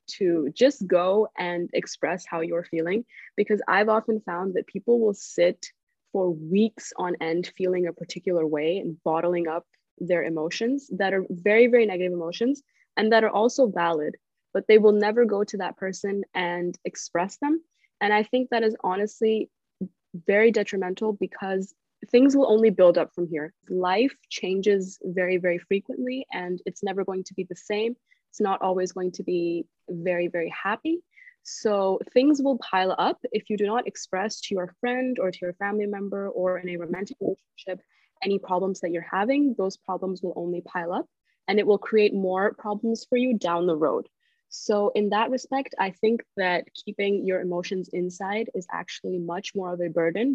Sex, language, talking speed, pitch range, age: female, English, 180 wpm, 180-225 Hz, 20-39